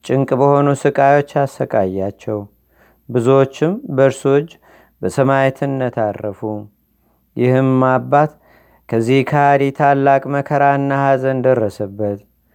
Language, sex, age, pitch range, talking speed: Amharic, male, 40-59, 130-145 Hz, 80 wpm